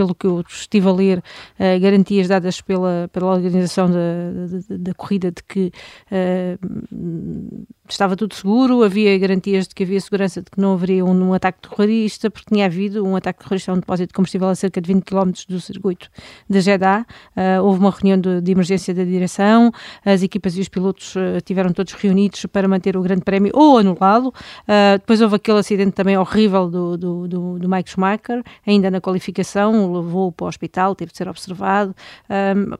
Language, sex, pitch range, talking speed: Portuguese, female, 185-205 Hz, 195 wpm